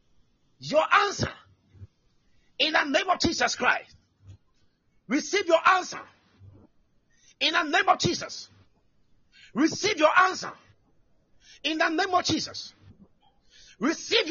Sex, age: male, 50-69